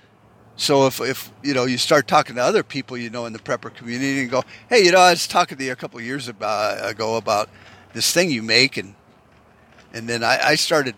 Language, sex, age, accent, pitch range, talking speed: English, male, 50-69, American, 115-145 Hz, 240 wpm